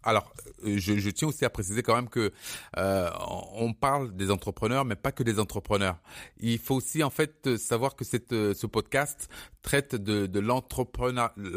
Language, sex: French, male